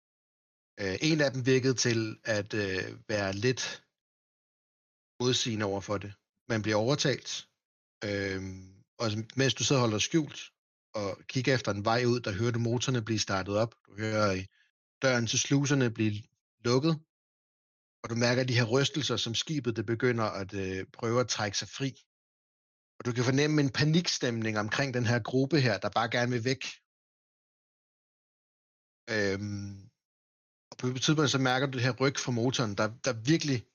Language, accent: Danish, native